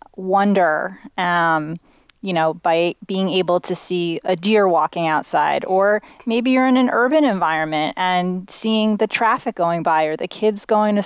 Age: 30-49